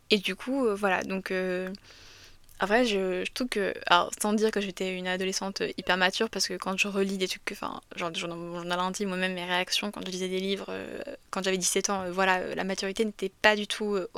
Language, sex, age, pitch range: French, female, 20-39, 190-225 Hz